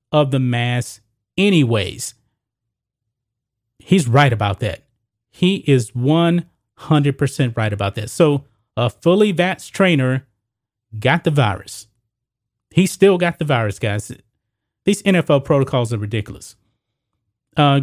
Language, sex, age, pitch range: English, male, 30-49, 115-150 Hz